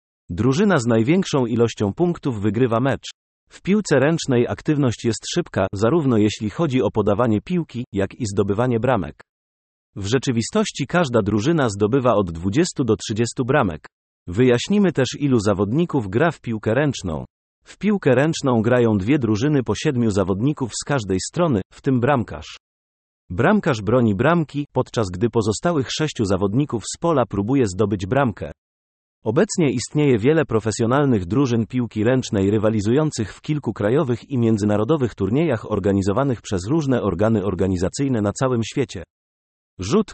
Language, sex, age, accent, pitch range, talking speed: Polish, male, 40-59, native, 105-140 Hz, 140 wpm